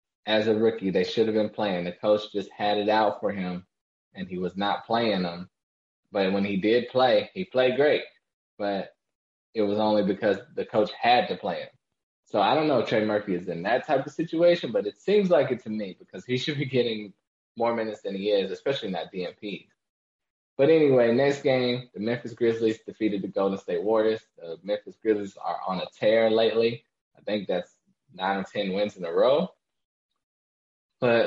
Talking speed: 205 wpm